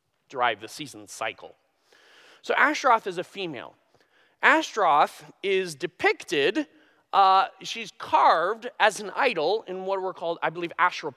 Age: 30-49